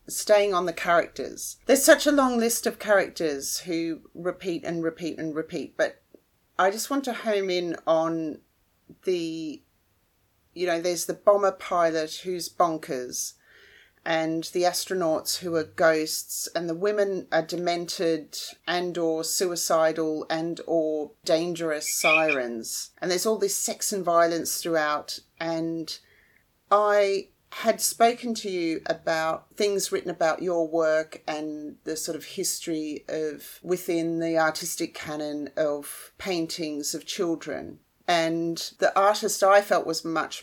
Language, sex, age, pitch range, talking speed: English, female, 40-59, 160-190 Hz, 140 wpm